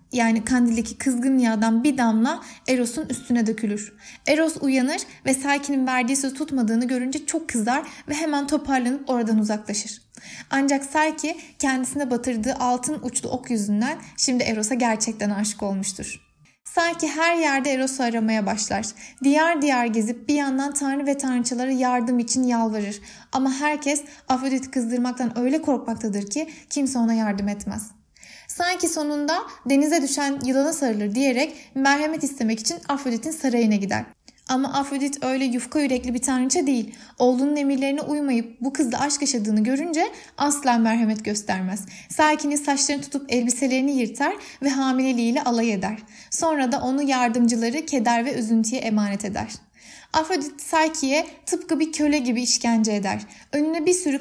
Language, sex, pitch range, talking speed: Turkish, female, 230-285 Hz, 140 wpm